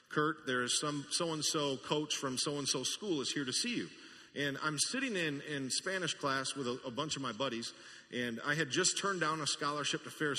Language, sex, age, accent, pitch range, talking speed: English, male, 40-59, American, 125-155 Hz, 220 wpm